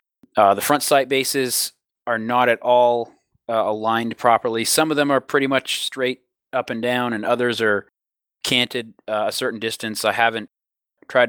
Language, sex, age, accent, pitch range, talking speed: English, male, 30-49, American, 110-135 Hz, 175 wpm